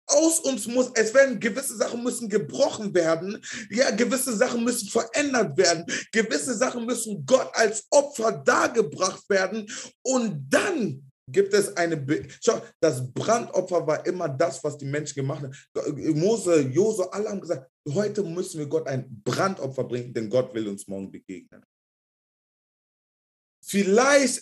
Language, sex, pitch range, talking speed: German, male, 145-220 Hz, 145 wpm